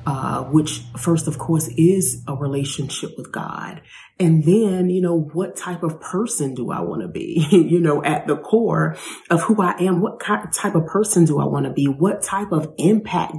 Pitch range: 145-175 Hz